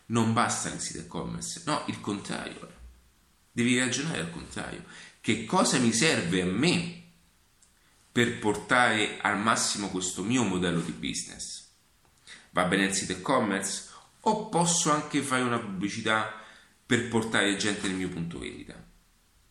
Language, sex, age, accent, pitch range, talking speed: Italian, male, 40-59, native, 90-120 Hz, 140 wpm